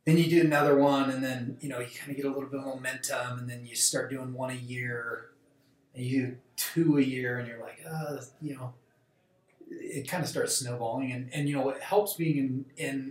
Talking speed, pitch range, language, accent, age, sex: 245 wpm, 125-150 Hz, English, American, 30-49, male